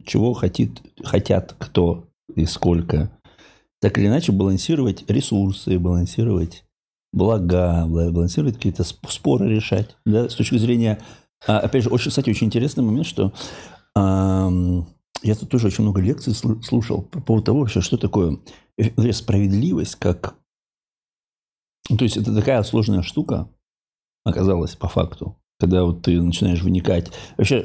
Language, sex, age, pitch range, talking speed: Russian, male, 50-69, 90-115 Hz, 130 wpm